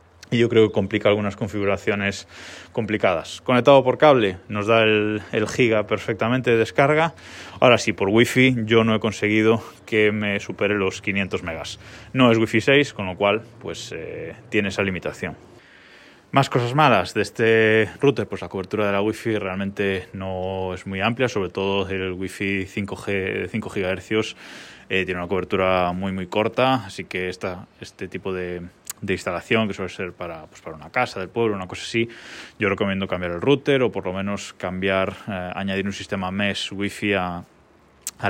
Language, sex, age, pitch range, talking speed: Spanish, male, 20-39, 95-115 Hz, 180 wpm